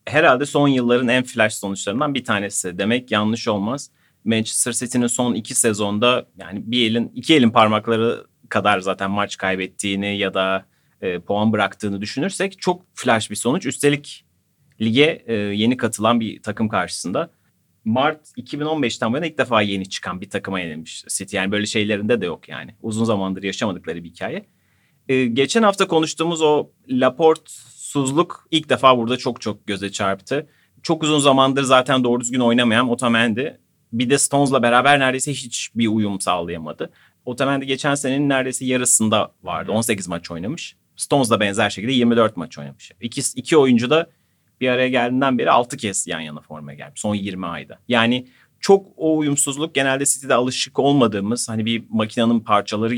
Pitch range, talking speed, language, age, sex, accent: 105-135 Hz, 160 wpm, Turkish, 30-49, male, native